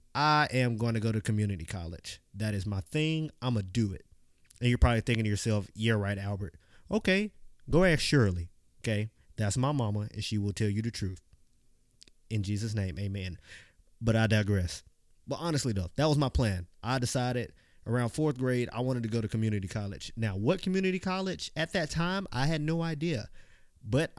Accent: American